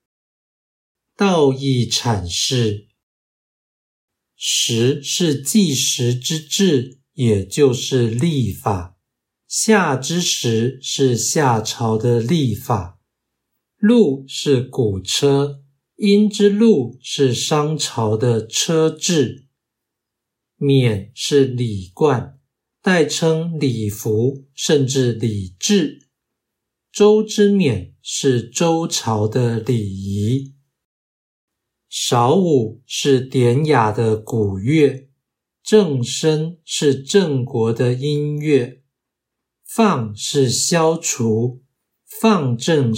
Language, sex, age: Chinese, male, 60-79